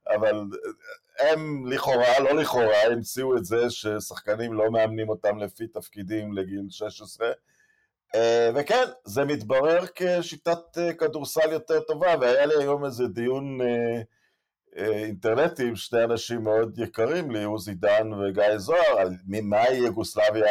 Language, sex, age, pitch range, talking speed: Hebrew, male, 50-69, 105-145 Hz, 125 wpm